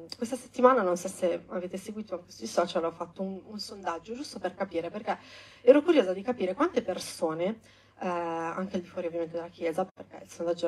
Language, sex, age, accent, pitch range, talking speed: Italian, female, 30-49, native, 160-205 Hz, 195 wpm